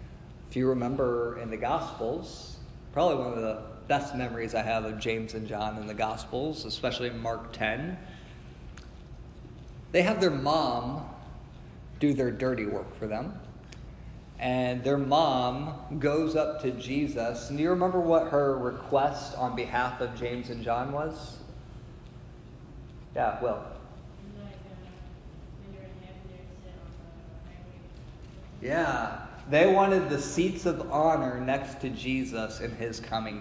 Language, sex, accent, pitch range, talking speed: English, male, American, 115-140 Hz, 125 wpm